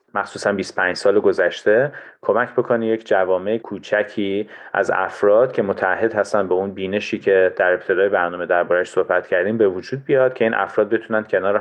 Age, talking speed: 30-49, 165 wpm